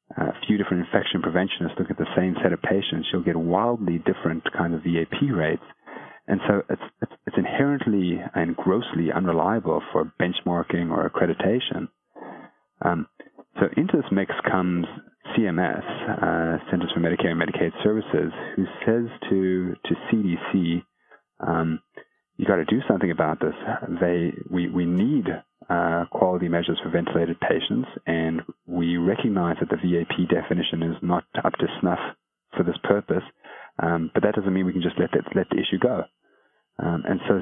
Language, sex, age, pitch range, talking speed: English, male, 30-49, 85-105 Hz, 165 wpm